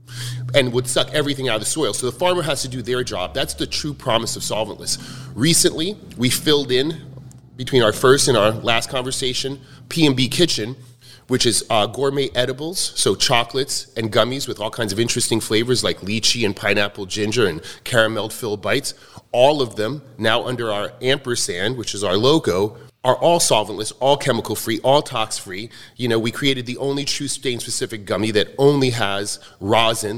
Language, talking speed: English, 185 wpm